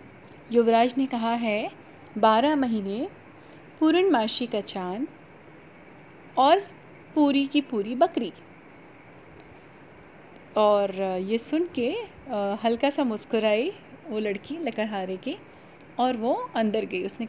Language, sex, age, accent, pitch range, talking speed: Hindi, female, 30-49, native, 210-275 Hz, 110 wpm